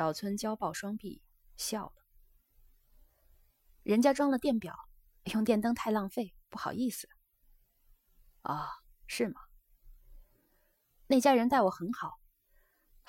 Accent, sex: native, female